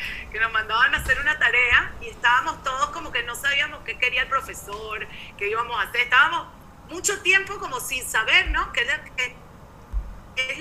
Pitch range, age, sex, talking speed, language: 240-315 Hz, 40-59, female, 190 wpm, Spanish